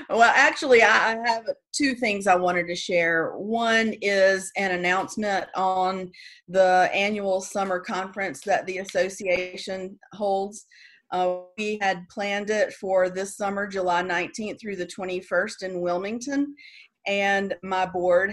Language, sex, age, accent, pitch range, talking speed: English, female, 40-59, American, 180-220 Hz, 135 wpm